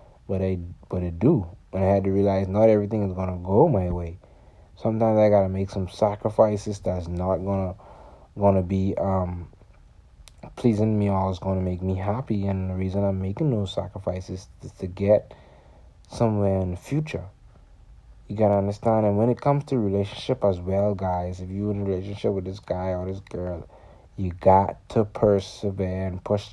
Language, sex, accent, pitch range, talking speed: English, male, American, 95-115 Hz, 185 wpm